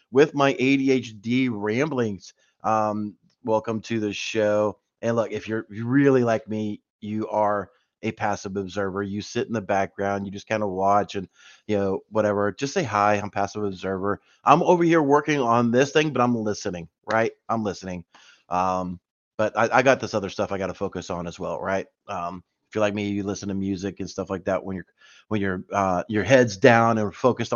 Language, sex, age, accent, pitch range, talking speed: English, male, 30-49, American, 100-115 Hz, 205 wpm